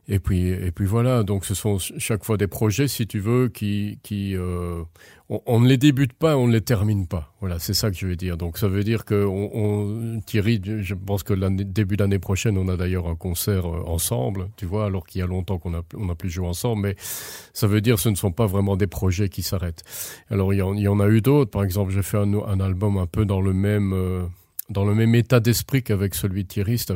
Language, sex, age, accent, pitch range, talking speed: French, male, 40-59, French, 95-105 Hz, 260 wpm